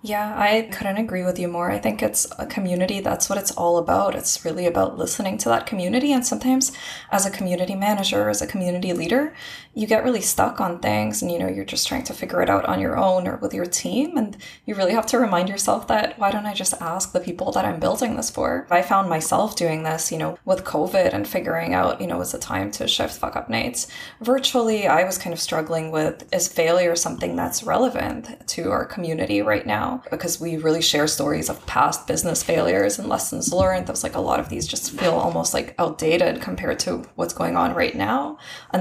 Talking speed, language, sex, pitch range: 225 wpm, English, female, 165-220 Hz